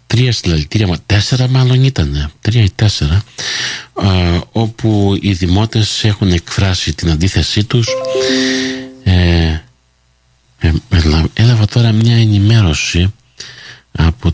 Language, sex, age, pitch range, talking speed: Greek, male, 50-69, 80-115 Hz, 105 wpm